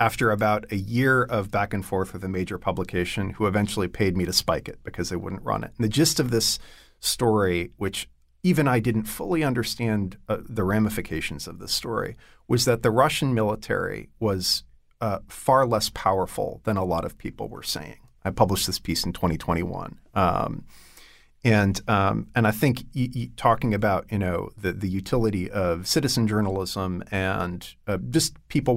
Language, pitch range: English, 95-115 Hz